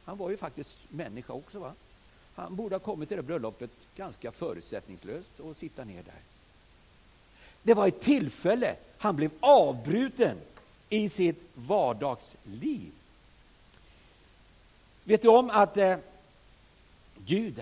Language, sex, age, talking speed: Swedish, male, 60-79, 120 wpm